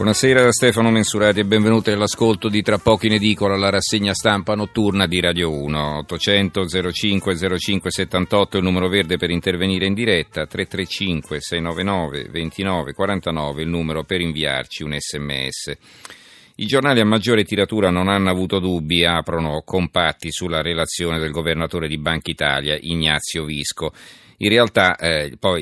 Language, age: Italian, 40-59